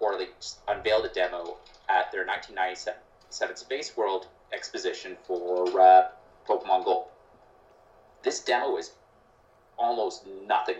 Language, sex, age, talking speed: English, male, 30-49, 105 wpm